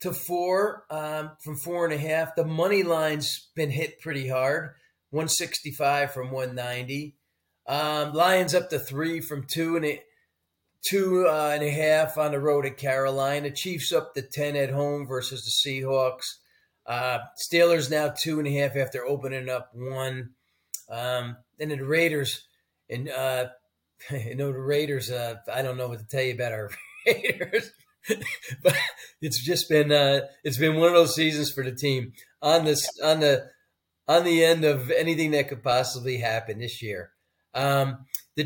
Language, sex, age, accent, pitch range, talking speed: English, male, 40-59, American, 130-160 Hz, 175 wpm